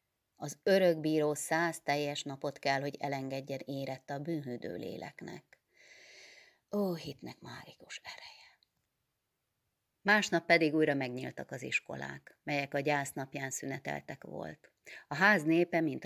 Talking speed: 115 wpm